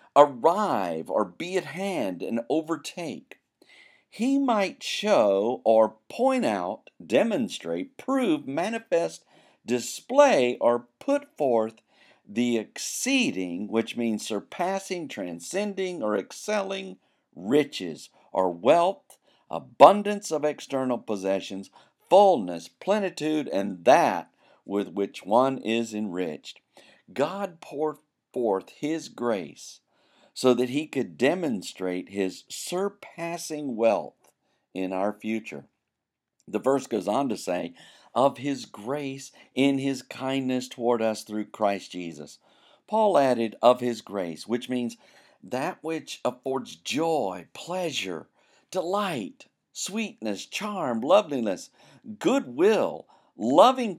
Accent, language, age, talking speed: American, English, 50-69, 105 wpm